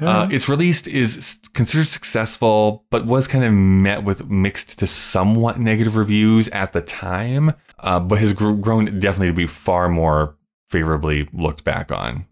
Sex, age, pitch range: male, 20-39, 85-110 Hz